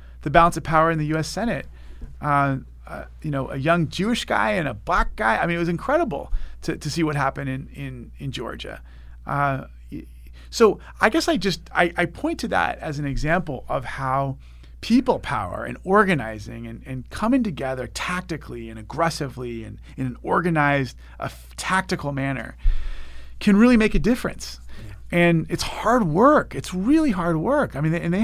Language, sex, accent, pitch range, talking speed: English, male, American, 115-165 Hz, 180 wpm